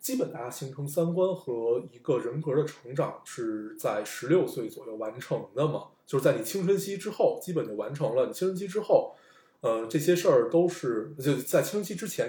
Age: 20-39